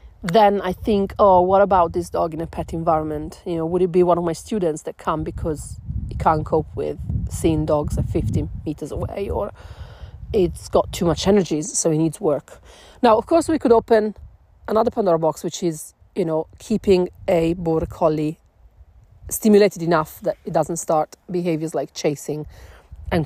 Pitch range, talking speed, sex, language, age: 150-185 Hz, 185 wpm, female, English, 40-59